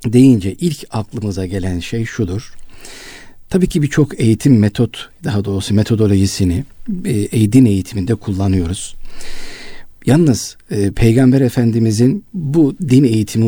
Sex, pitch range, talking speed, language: male, 100-130 Hz, 100 wpm, Turkish